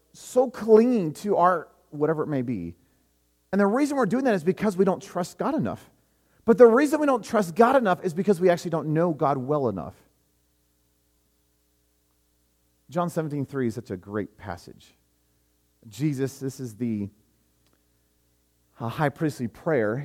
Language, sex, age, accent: English, male, 40-59, American